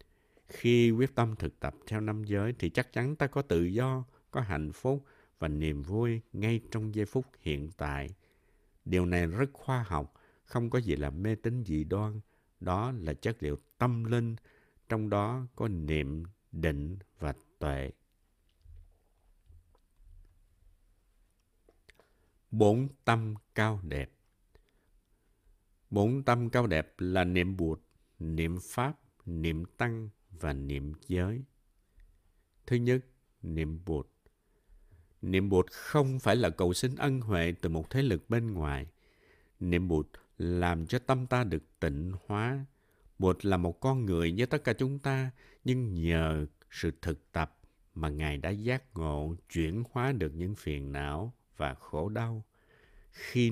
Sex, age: male, 60-79